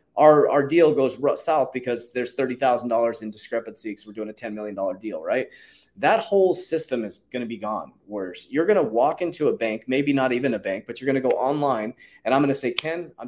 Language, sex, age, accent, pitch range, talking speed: English, male, 30-49, American, 120-155 Hz, 235 wpm